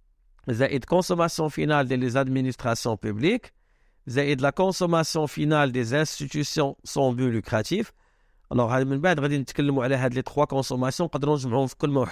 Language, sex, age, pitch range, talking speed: Arabic, male, 50-69, 130-155 Hz, 110 wpm